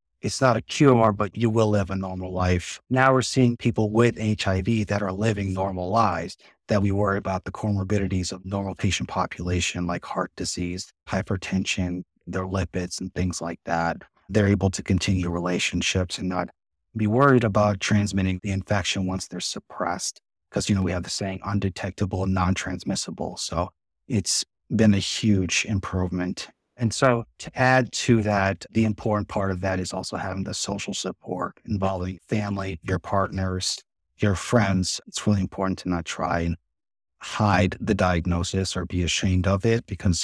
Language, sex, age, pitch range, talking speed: English, male, 30-49, 90-105 Hz, 170 wpm